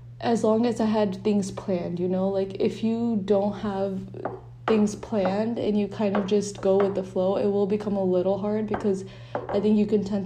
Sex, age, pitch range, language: female, 20-39, 185-210 Hz, English